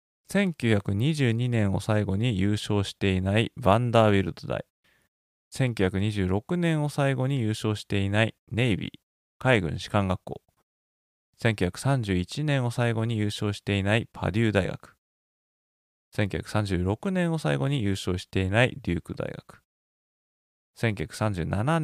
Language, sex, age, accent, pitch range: Japanese, male, 20-39, native, 95-125 Hz